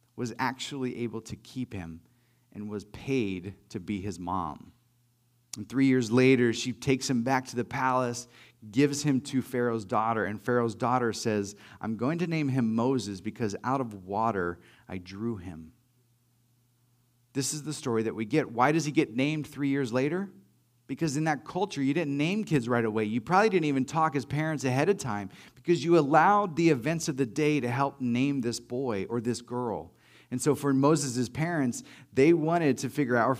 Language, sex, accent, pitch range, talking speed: English, male, American, 115-150 Hz, 195 wpm